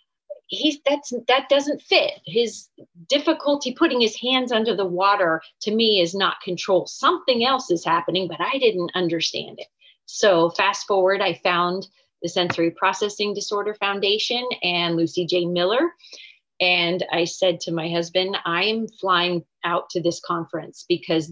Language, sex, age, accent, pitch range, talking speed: English, female, 30-49, American, 175-230 Hz, 150 wpm